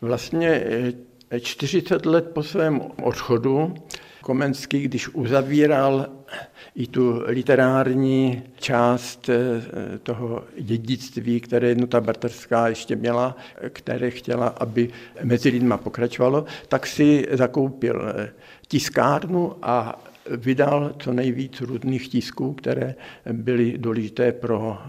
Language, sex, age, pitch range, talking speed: Czech, male, 50-69, 120-140 Hz, 95 wpm